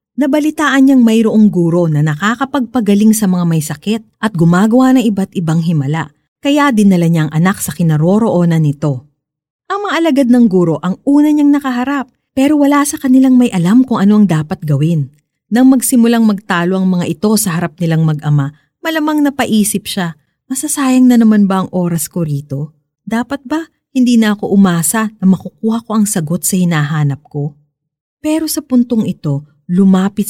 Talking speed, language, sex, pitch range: 160 wpm, Filipino, female, 165-255 Hz